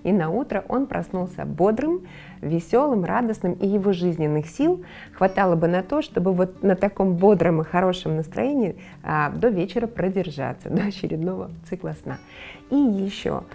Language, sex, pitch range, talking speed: Ukrainian, female, 165-205 Hz, 145 wpm